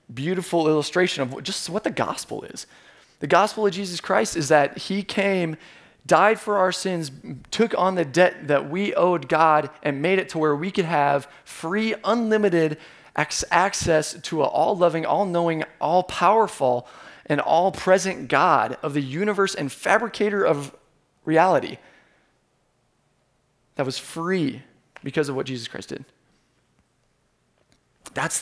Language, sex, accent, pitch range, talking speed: English, male, American, 140-185 Hz, 145 wpm